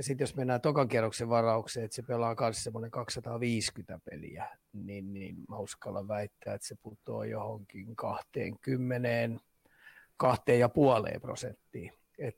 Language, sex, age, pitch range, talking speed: Finnish, male, 30-49, 115-125 Hz, 125 wpm